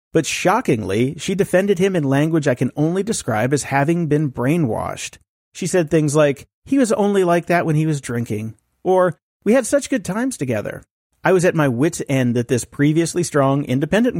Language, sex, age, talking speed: English, male, 40-59, 195 wpm